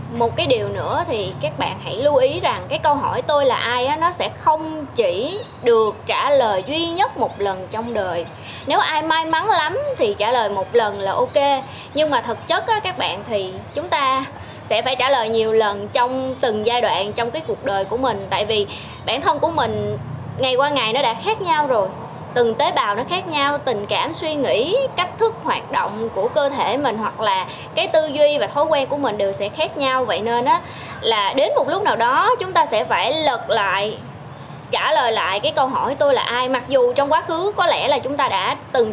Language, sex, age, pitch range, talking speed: Vietnamese, female, 20-39, 230-345 Hz, 230 wpm